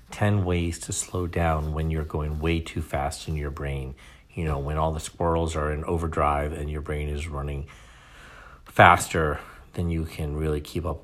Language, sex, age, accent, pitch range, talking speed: English, male, 40-59, American, 75-90 Hz, 190 wpm